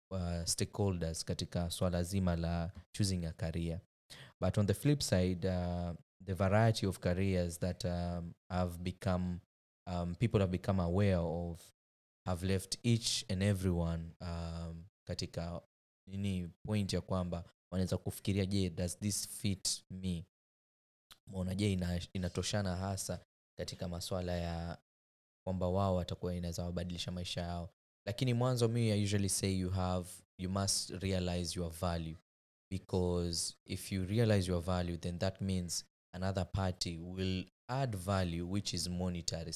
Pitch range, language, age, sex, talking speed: 85-100 Hz, English, 20-39, male, 140 wpm